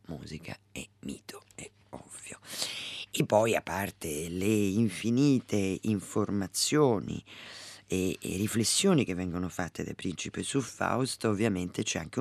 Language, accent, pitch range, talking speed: Italian, native, 90-115 Hz, 125 wpm